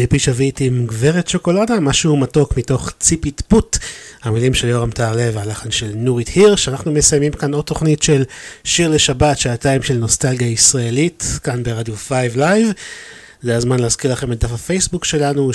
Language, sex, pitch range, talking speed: Hebrew, male, 120-150 Hz, 160 wpm